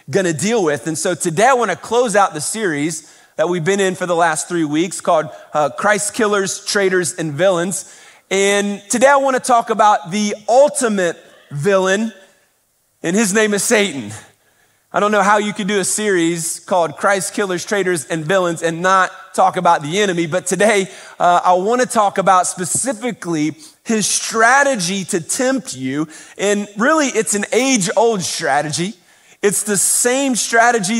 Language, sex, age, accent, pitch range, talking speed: English, male, 30-49, American, 175-215 Hz, 175 wpm